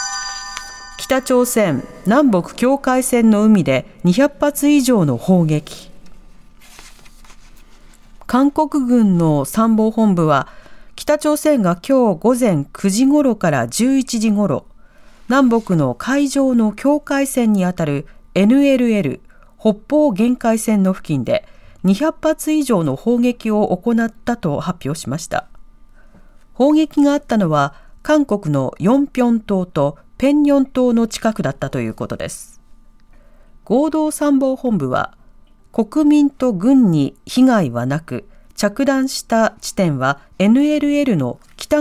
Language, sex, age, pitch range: Japanese, female, 40-59, 175-270 Hz